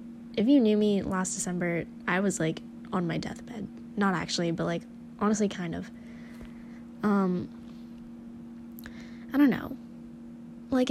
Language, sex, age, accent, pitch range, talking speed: English, female, 10-29, American, 190-235 Hz, 130 wpm